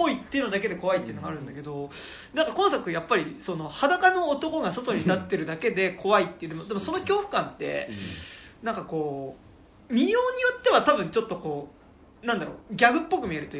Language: Japanese